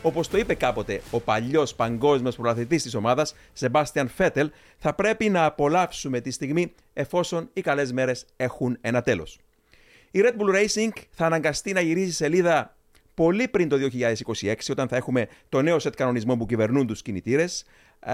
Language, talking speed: Greek, 160 wpm